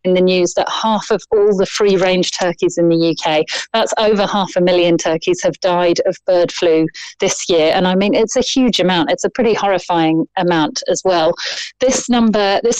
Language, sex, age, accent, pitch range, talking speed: English, female, 30-49, British, 175-200 Hz, 205 wpm